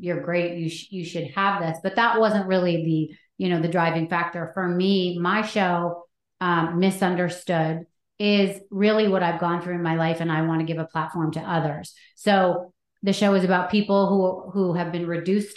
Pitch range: 170-190 Hz